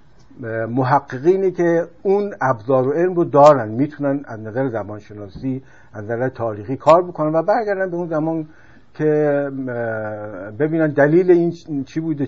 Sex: male